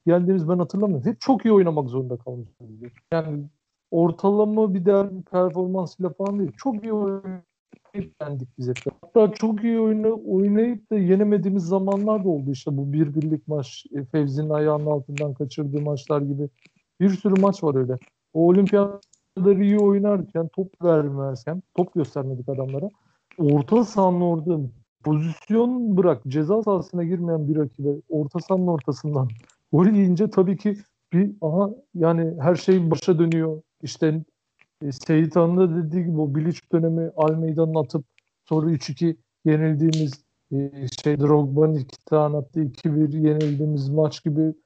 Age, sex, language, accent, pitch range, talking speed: 60-79, male, Turkish, native, 150-190 Hz, 140 wpm